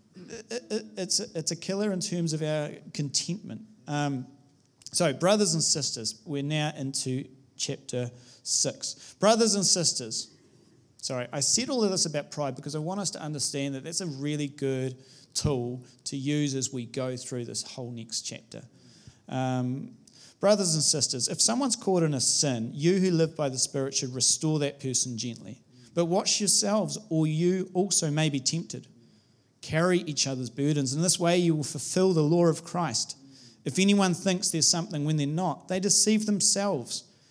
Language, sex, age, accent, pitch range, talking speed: English, male, 30-49, Australian, 130-180 Hz, 175 wpm